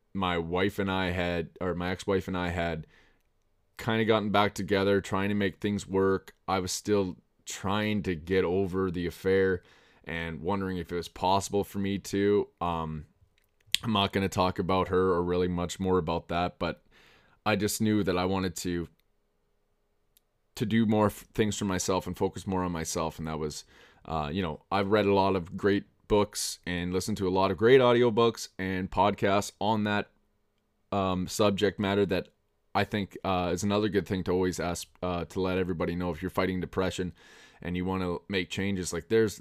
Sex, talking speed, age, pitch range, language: male, 200 wpm, 20-39, 90-100 Hz, English